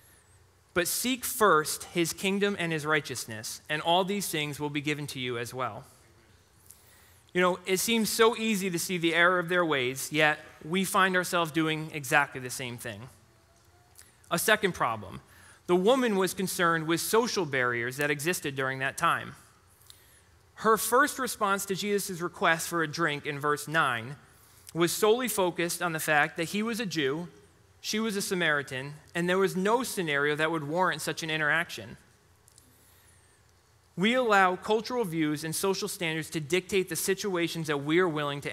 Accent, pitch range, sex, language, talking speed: American, 130-190 Hz, male, English, 170 wpm